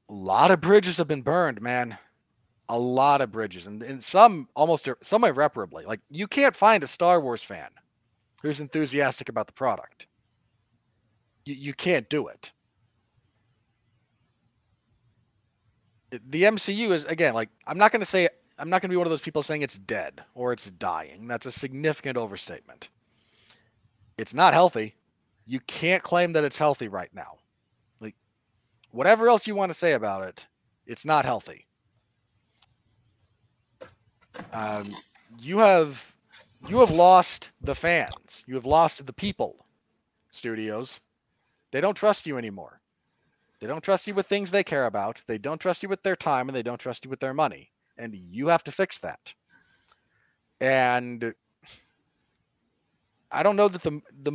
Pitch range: 115-165 Hz